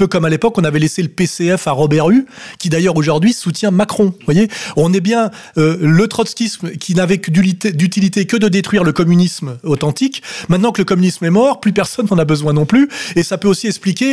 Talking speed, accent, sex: 225 wpm, French, male